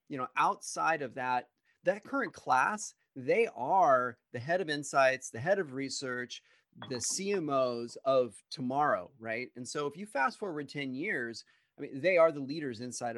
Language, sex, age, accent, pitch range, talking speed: English, male, 30-49, American, 125-175 Hz, 175 wpm